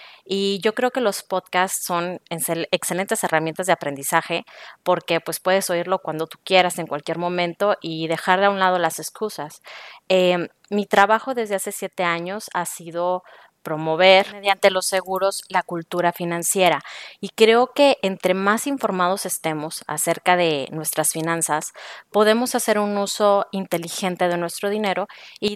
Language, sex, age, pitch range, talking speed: Spanish, female, 20-39, 170-200 Hz, 155 wpm